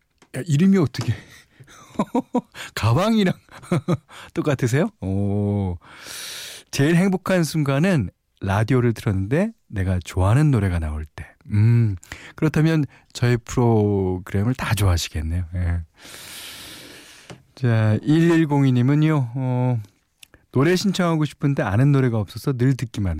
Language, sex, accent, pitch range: Korean, male, native, 95-145 Hz